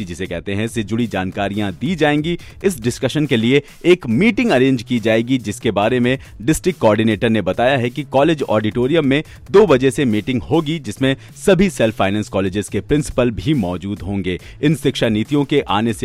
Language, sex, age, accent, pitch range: Hindi, male, 40-59, native, 110-145 Hz